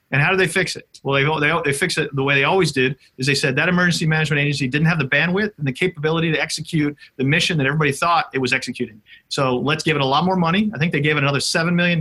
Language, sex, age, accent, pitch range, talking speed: English, male, 40-59, American, 130-165 Hz, 285 wpm